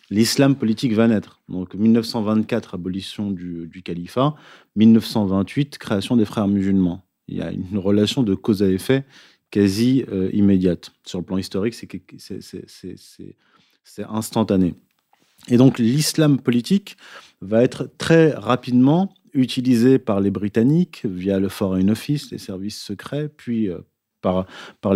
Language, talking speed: French, 145 wpm